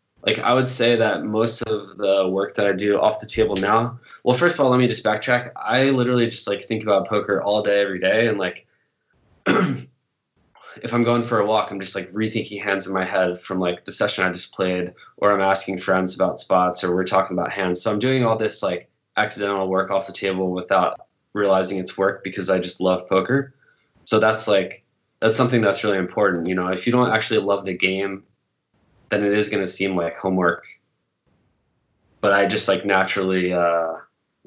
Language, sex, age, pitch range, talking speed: English, male, 20-39, 95-110 Hz, 210 wpm